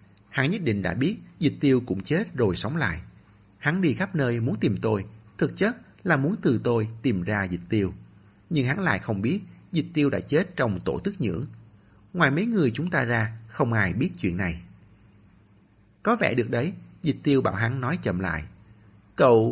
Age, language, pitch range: 30-49, Vietnamese, 100-130 Hz